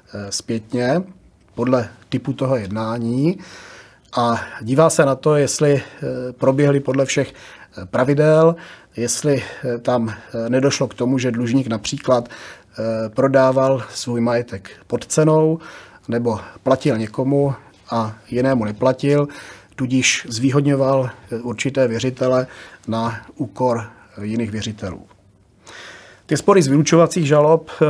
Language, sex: Czech, male